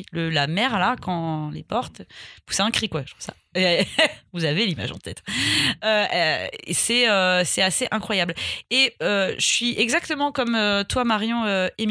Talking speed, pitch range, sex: 180 wpm, 185-250 Hz, female